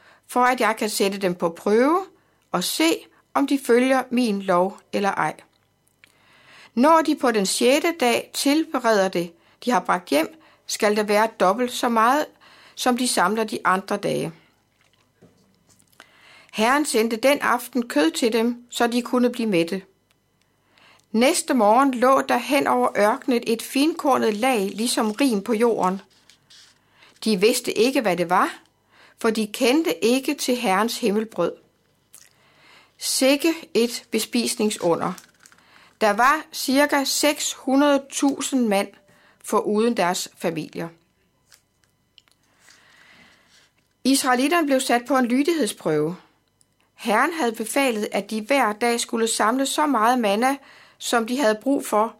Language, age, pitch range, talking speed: Danish, 60-79, 210-270 Hz, 130 wpm